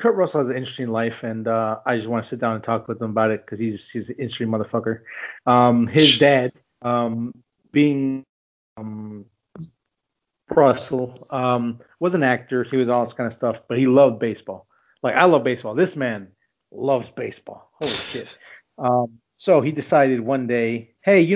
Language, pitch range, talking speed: English, 115-145 Hz, 185 wpm